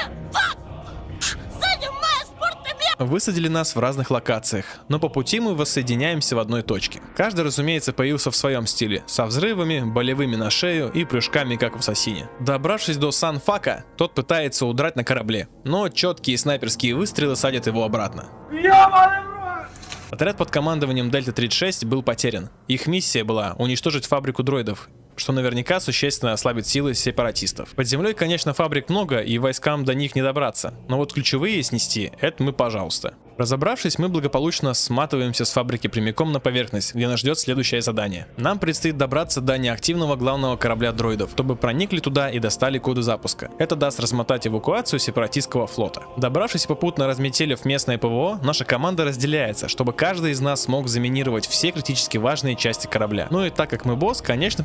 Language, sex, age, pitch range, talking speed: Russian, male, 20-39, 120-155 Hz, 155 wpm